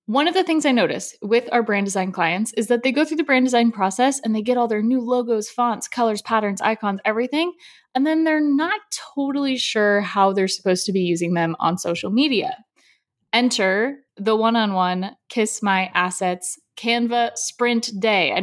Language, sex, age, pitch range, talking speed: English, female, 20-39, 200-270 Hz, 190 wpm